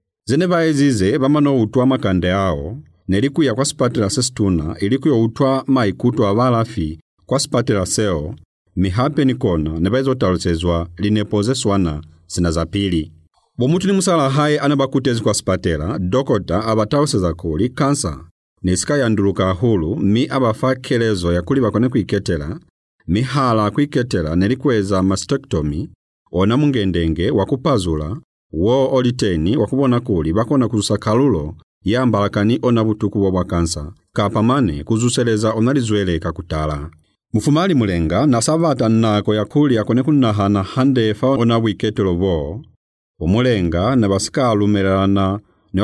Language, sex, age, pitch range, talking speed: English, male, 50-69, 90-130 Hz, 120 wpm